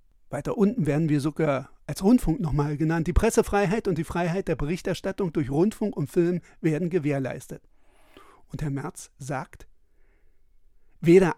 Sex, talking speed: male, 140 wpm